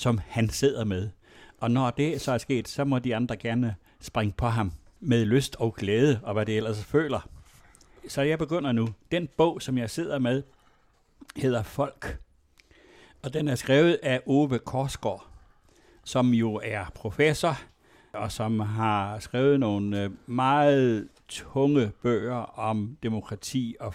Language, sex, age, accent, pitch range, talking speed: Danish, male, 60-79, native, 110-140 Hz, 155 wpm